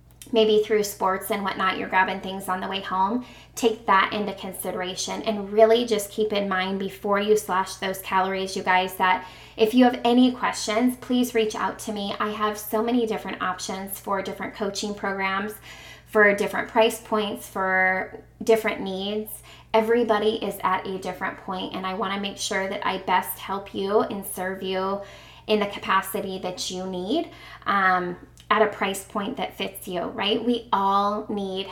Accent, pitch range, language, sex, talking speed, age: American, 190-215 Hz, English, female, 180 wpm, 20-39